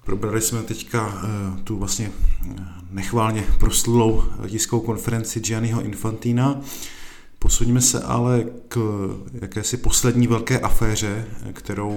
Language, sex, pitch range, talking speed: Czech, male, 100-115 Hz, 110 wpm